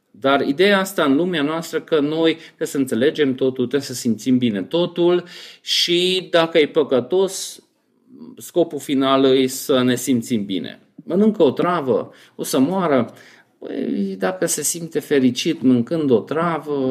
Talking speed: 150 wpm